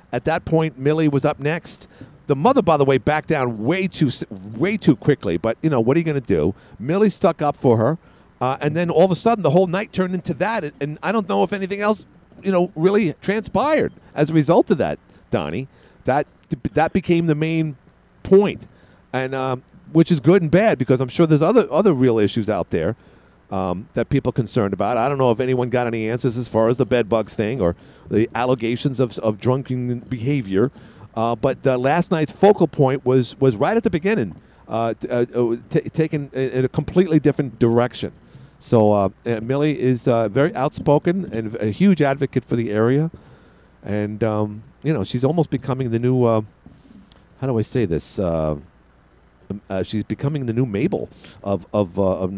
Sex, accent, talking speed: male, American, 200 wpm